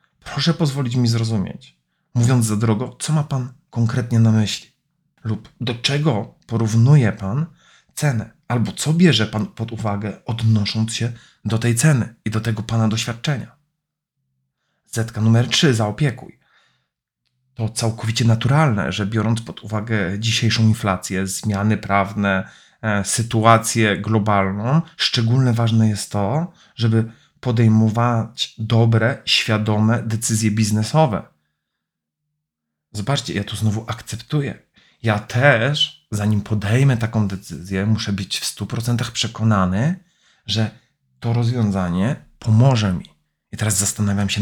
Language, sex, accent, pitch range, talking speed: Polish, male, native, 105-125 Hz, 120 wpm